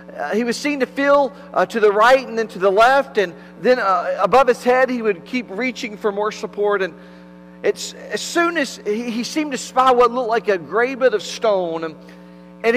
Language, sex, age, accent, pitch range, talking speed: English, male, 40-59, American, 150-230 Hz, 220 wpm